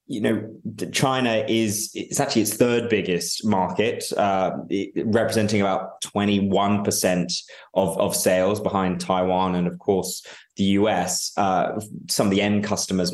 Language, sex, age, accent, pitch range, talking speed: English, male, 20-39, British, 90-105 Hz, 135 wpm